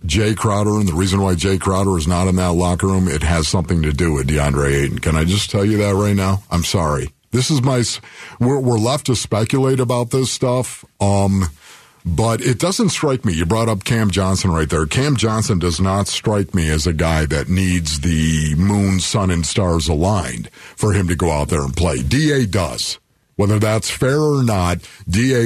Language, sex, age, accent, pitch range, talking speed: English, male, 50-69, American, 95-135 Hz, 210 wpm